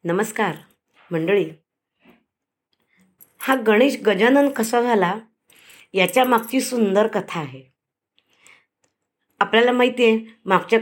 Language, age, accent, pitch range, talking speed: Marathi, 20-39, native, 200-265 Hz, 90 wpm